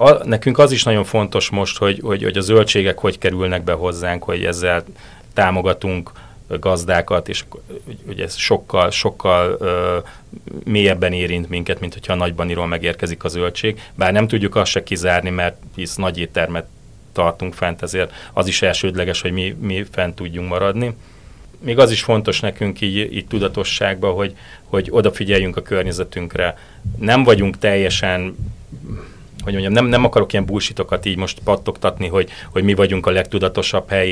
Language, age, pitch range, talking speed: Hungarian, 30-49, 90-105 Hz, 155 wpm